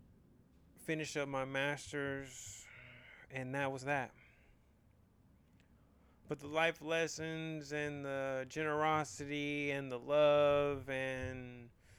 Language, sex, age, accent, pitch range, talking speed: English, male, 30-49, American, 95-140 Hz, 95 wpm